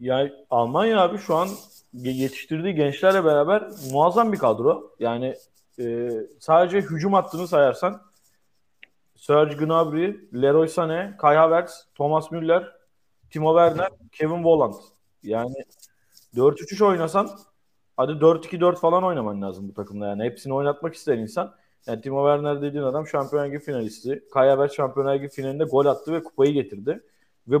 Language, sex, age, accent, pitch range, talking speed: Turkish, male, 30-49, native, 130-175 Hz, 135 wpm